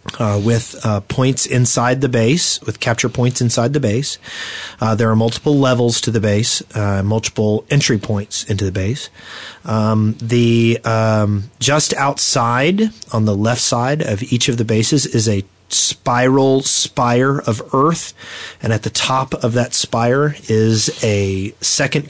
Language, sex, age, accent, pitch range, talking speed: English, male, 30-49, American, 110-130 Hz, 160 wpm